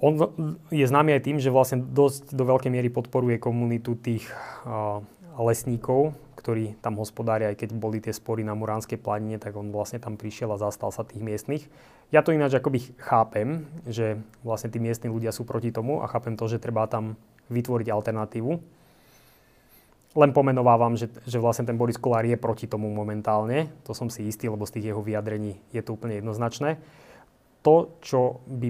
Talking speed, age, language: 180 wpm, 20-39, Slovak